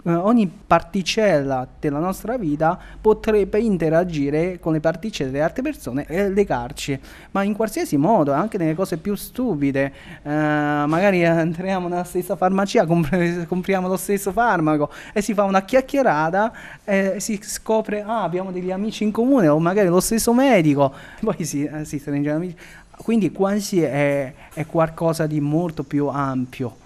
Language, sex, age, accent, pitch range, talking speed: Italian, male, 30-49, native, 140-180 Hz, 155 wpm